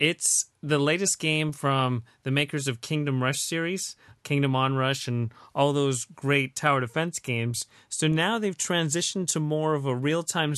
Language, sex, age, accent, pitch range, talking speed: English, male, 30-49, American, 125-140 Hz, 165 wpm